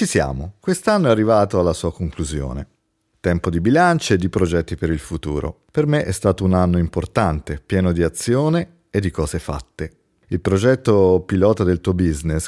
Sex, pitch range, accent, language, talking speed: male, 80-105 Hz, native, Italian, 180 wpm